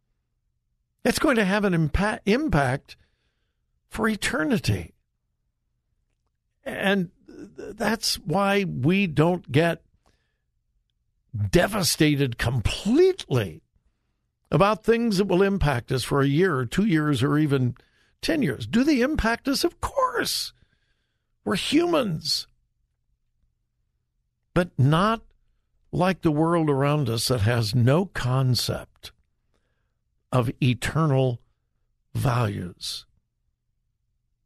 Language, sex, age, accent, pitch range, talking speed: English, male, 60-79, American, 125-195 Hz, 95 wpm